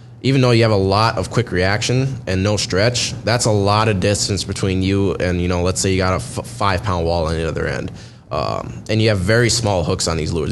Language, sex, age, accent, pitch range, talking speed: English, male, 20-39, American, 95-115 Hz, 250 wpm